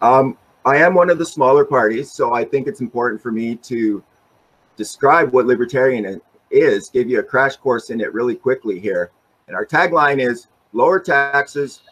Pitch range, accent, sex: 115-170 Hz, American, male